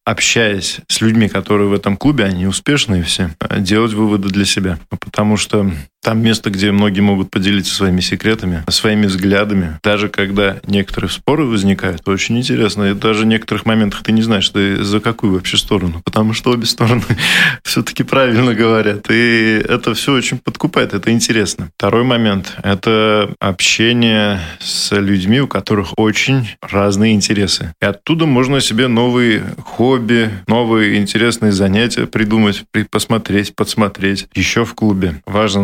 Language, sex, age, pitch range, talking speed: Russian, male, 20-39, 95-115 Hz, 145 wpm